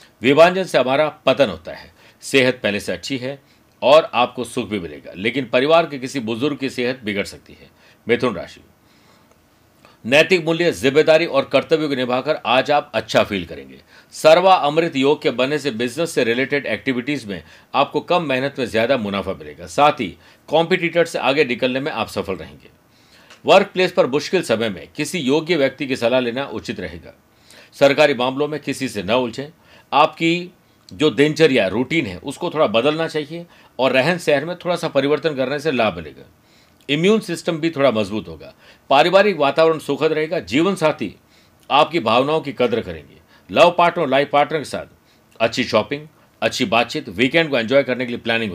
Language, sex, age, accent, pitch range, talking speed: Hindi, male, 50-69, native, 125-160 Hz, 175 wpm